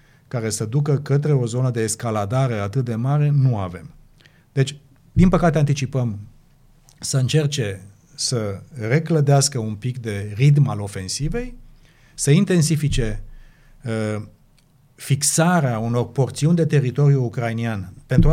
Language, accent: Romanian, native